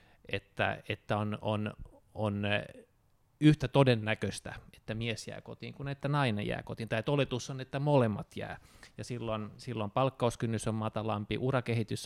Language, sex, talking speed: Finnish, male, 145 wpm